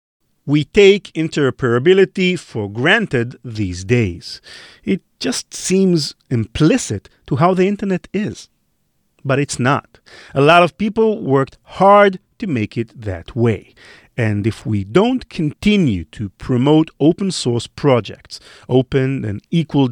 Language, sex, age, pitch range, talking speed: English, male, 40-59, 115-175 Hz, 130 wpm